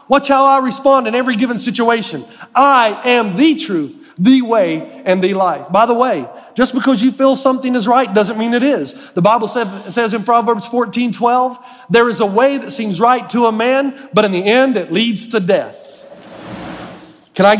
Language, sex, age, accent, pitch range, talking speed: English, male, 40-59, American, 200-255 Hz, 200 wpm